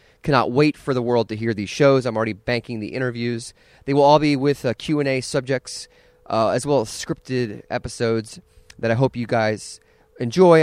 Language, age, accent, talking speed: English, 30-49, American, 190 wpm